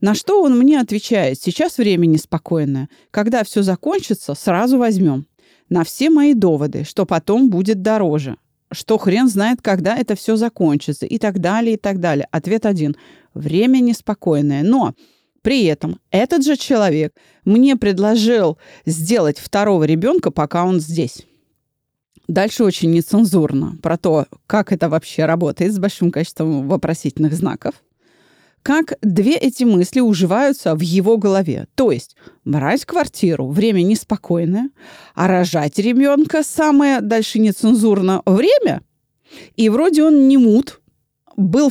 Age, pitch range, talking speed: 30-49, 170-235 Hz, 135 wpm